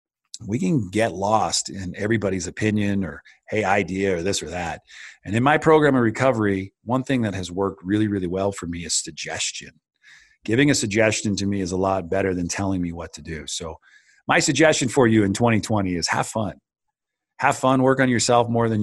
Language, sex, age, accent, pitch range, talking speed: English, male, 40-59, American, 95-115 Hz, 205 wpm